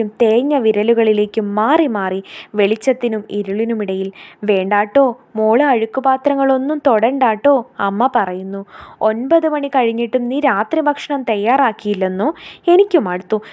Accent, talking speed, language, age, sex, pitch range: native, 100 wpm, Malayalam, 20-39, female, 210-270 Hz